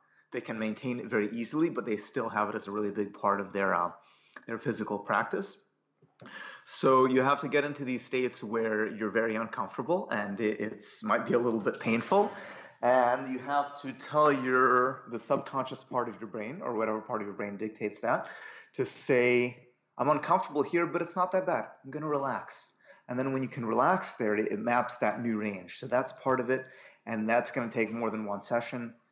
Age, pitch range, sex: 30-49, 110-140 Hz, male